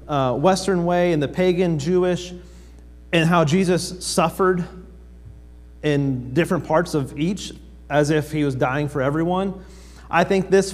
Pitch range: 120-165 Hz